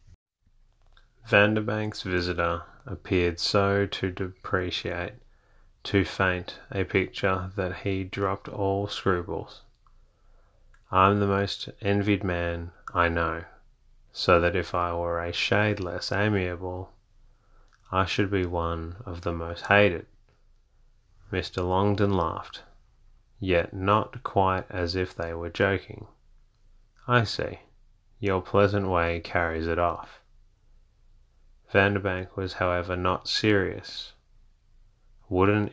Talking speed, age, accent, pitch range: 105 wpm, 30-49, Australian, 90-105 Hz